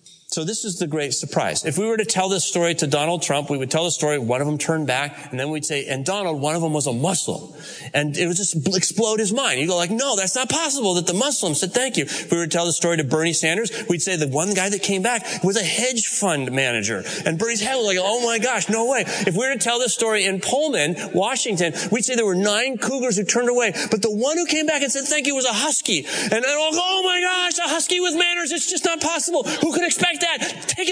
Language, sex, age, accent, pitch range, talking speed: English, male, 30-49, American, 150-235 Hz, 280 wpm